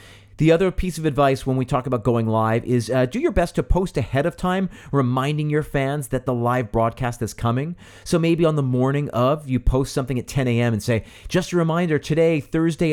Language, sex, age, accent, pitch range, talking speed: English, male, 40-59, American, 115-150 Hz, 230 wpm